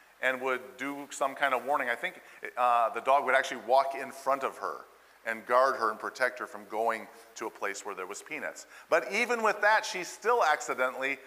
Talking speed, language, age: 220 wpm, English, 50-69